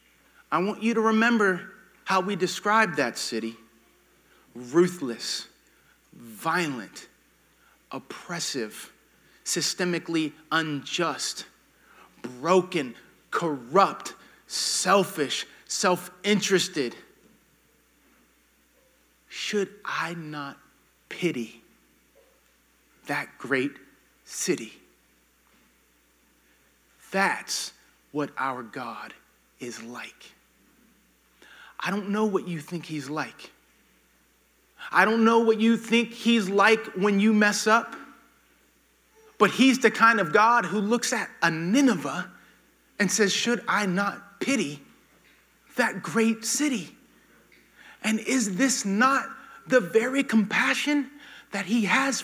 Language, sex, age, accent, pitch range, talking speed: English, male, 30-49, American, 170-250 Hz, 95 wpm